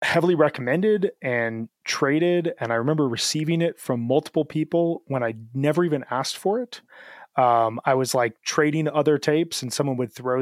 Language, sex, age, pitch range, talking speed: English, male, 20-39, 115-150 Hz, 175 wpm